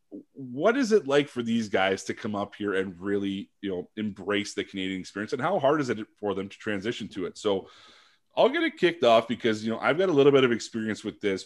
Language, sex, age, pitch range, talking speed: English, male, 30-49, 100-140 Hz, 250 wpm